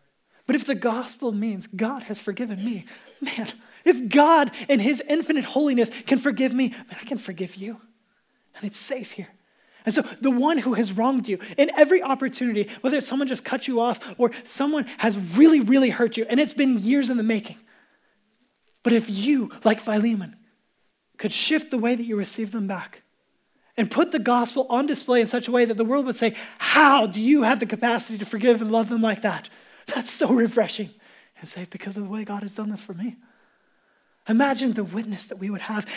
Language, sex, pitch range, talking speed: English, male, 210-255 Hz, 205 wpm